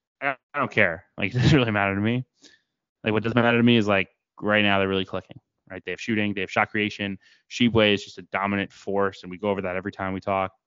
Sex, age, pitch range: male, 20-39, 100-120 Hz